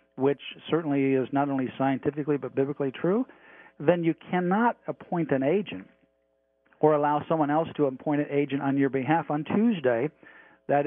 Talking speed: 160 wpm